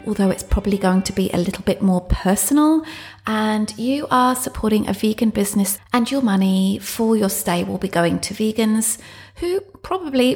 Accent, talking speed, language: British, 180 wpm, English